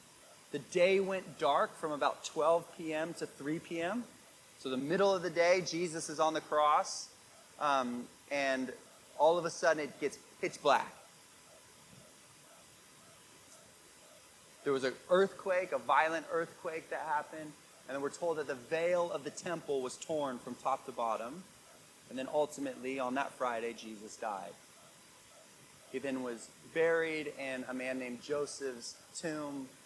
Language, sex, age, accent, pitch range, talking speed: English, male, 30-49, American, 135-180 Hz, 150 wpm